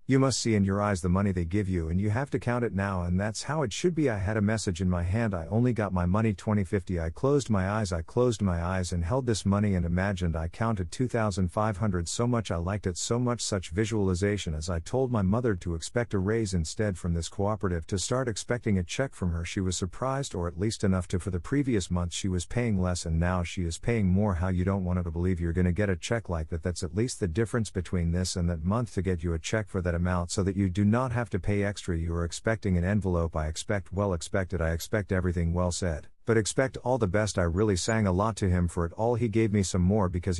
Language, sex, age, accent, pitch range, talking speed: English, male, 50-69, American, 90-110 Hz, 265 wpm